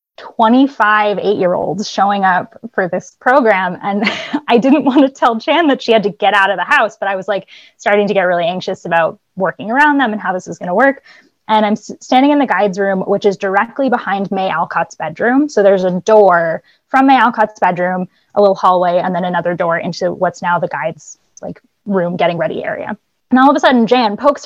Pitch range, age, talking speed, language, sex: 190-245 Hz, 20-39, 220 wpm, English, female